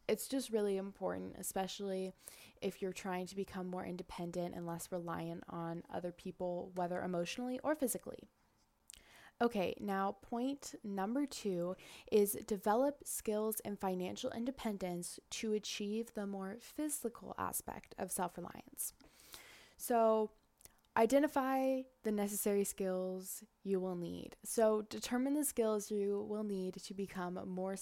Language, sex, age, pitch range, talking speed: English, female, 10-29, 185-230 Hz, 125 wpm